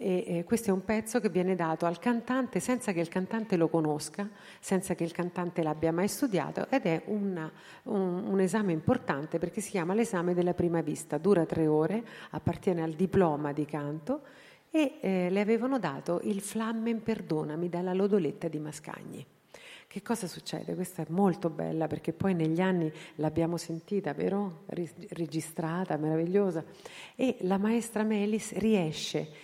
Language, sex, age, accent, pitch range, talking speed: Italian, female, 50-69, native, 170-205 Hz, 155 wpm